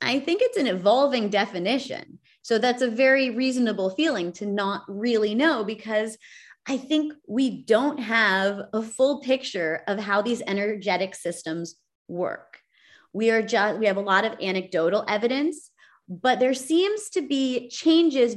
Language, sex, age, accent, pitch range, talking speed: English, female, 30-49, American, 195-260 Hz, 155 wpm